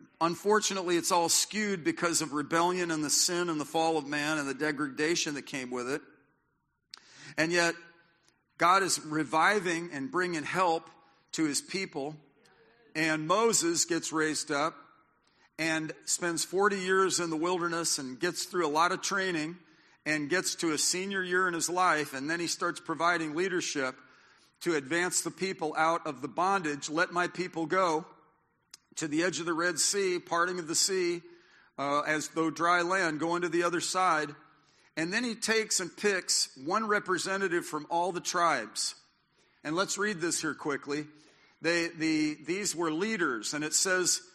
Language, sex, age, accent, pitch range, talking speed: English, male, 50-69, American, 155-185 Hz, 170 wpm